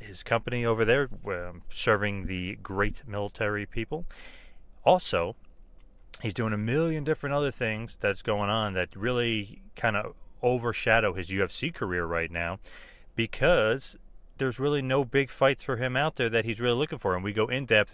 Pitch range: 95-120 Hz